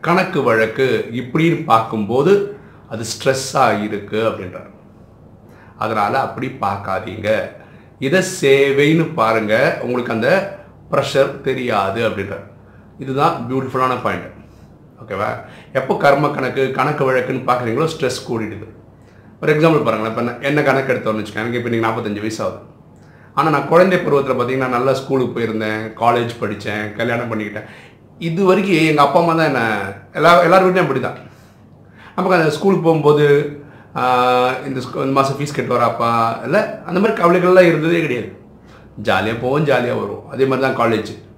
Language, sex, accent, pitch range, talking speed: Tamil, male, native, 115-150 Hz, 135 wpm